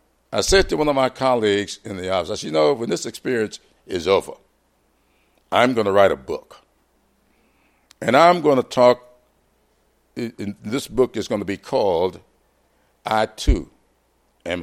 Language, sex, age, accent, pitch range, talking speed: English, male, 60-79, American, 100-165 Hz, 165 wpm